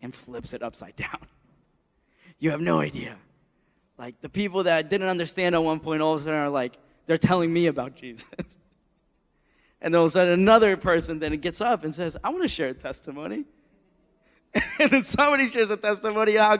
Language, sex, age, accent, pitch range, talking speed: English, male, 20-39, American, 145-205 Hz, 200 wpm